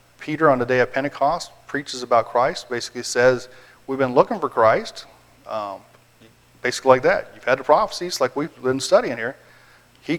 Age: 40-59